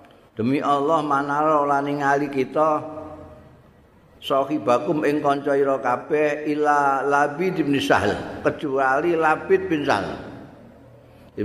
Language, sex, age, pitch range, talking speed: Indonesian, male, 50-69, 110-155 Hz, 90 wpm